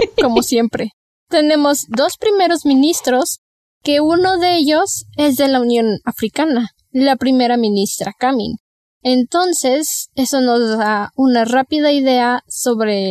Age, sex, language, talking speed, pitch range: 10-29, female, Spanish, 125 wpm, 225-285 Hz